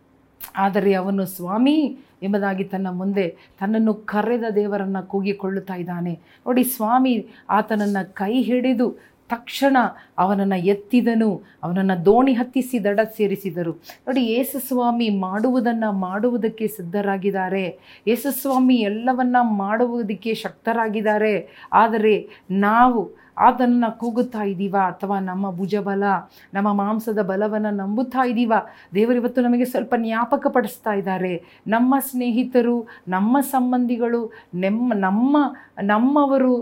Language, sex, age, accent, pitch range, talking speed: Kannada, female, 30-49, native, 195-250 Hz, 100 wpm